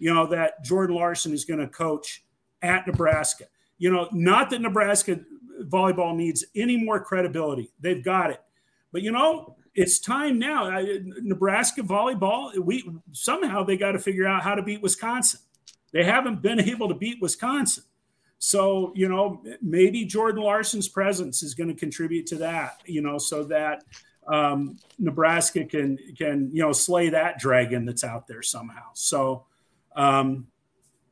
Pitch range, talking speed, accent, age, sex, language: 135-185 Hz, 160 wpm, American, 50-69, male, English